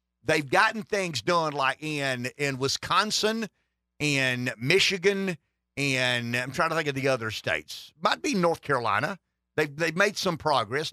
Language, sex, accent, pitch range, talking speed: English, male, American, 130-175 Hz, 160 wpm